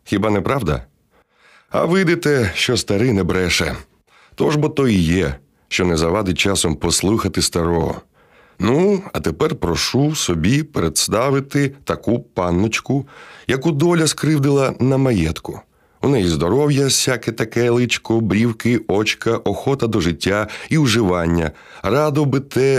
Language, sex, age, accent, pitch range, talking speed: Ukrainian, male, 30-49, native, 85-125 Hz, 130 wpm